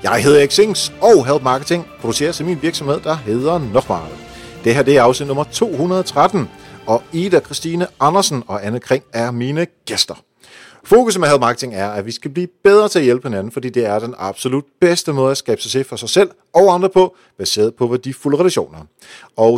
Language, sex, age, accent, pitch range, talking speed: Danish, male, 40-59, native, 105-150 Hz, 200 wpm